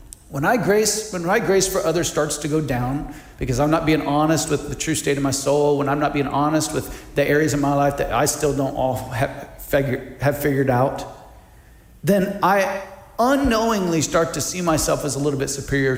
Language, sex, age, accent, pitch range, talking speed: English, male, 40-59, American, 130-155 Hz, 205 wpm